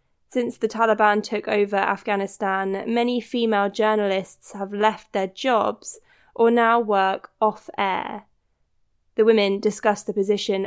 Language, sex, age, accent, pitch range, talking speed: English, female, 20-39, British, 200-230 Hz, 130 wpm